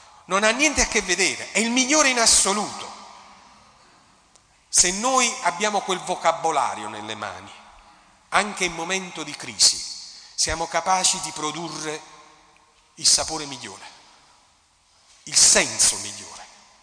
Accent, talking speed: native, 120 wpm